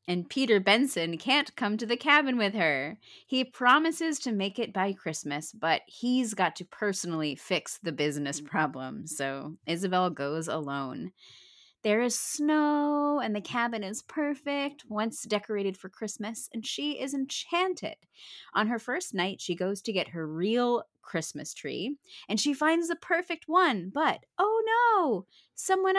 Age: 30-49